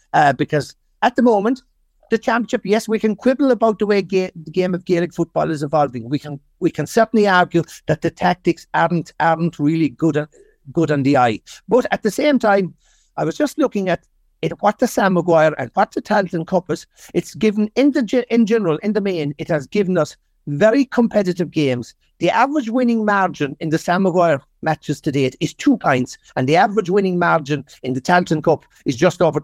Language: English